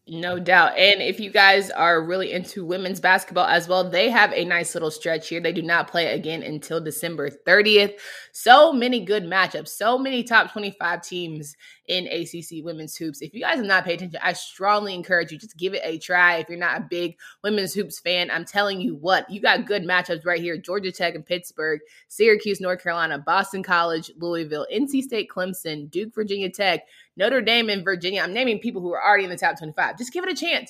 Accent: American